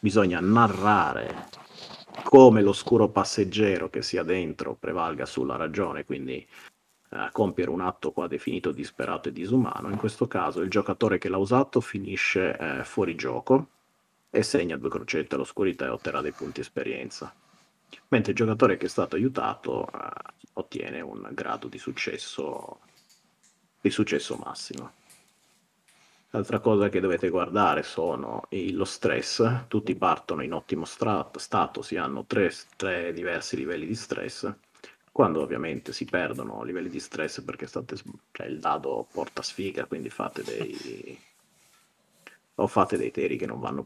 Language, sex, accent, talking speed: Italian, male, native, 145 wpm